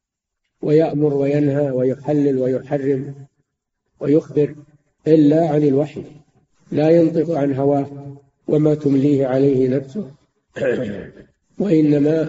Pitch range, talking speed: 135-150 Hz, 85 wpm